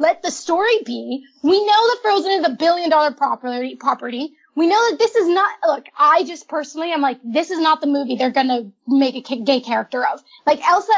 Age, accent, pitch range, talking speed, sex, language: 10-29, American, 290-390 Hz, 215 wpm, female, English